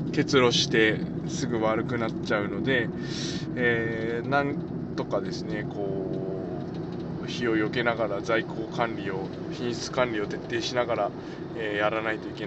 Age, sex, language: 20-39, male, Japanese